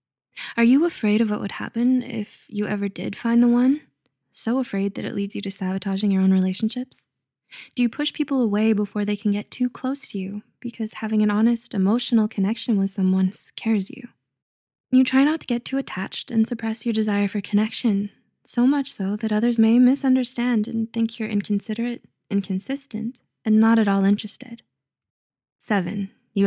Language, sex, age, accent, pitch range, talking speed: English, female, 20-39, American, 195-235 Hz, 180 wpm